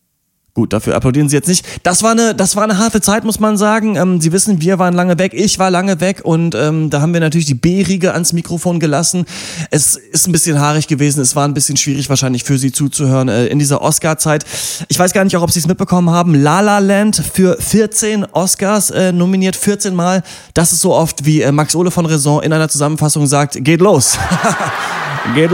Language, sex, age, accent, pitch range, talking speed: German, male, 30-49, German, 150-185 Hz, 215 wpm